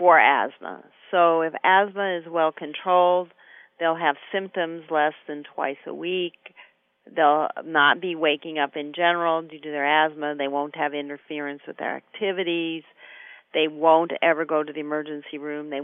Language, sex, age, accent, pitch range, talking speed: English, female, 50-69, American, 150-170 Hz, 160 wpm